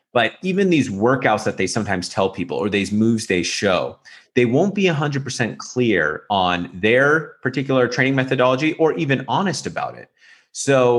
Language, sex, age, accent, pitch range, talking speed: English, male, 30-49, American, 95-125 Hz, 175 wpm